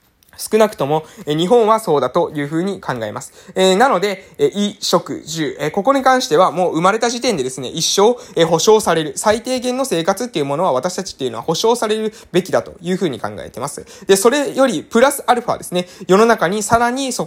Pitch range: 150-215 Hz